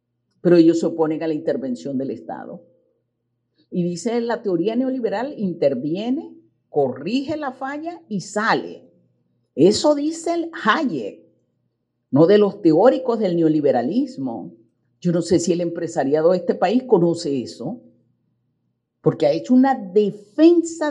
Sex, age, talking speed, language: female, 50-69, 130 wpm, Spanish